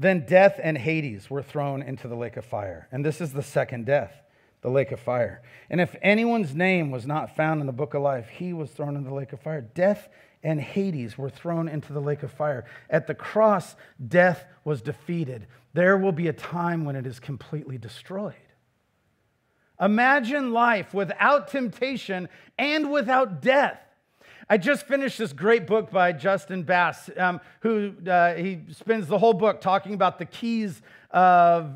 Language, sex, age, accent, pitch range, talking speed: English, male, 40-59, American, 165-240 Hz, 180 wpm